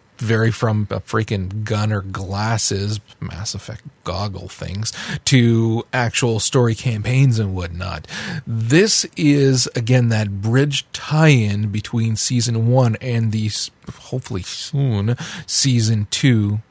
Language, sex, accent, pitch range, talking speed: English, male, American, 110-125 Hz, 115 wpm